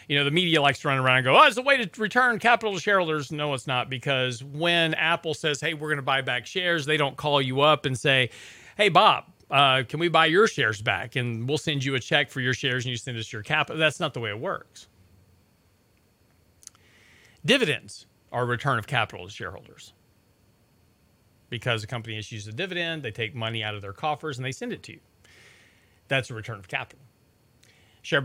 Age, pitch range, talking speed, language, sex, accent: 40-59, 110-150 Hz, 215 wpm, English, male, American